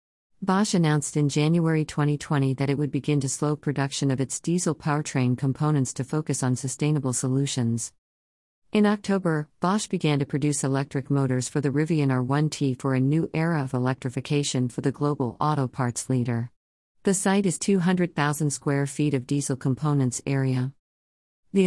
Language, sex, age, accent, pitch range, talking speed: English, female, 50-69, American, 130-155 Hz, 160 wpm